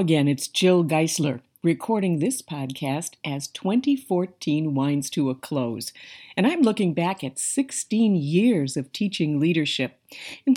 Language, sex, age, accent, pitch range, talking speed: English, female, 50-69, American, 150-215 Hz, 135 wpm